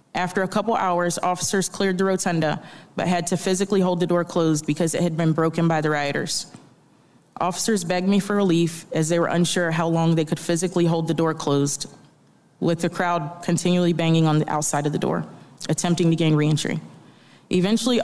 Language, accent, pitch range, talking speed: English, American, 160-185 Hz, 195 wpm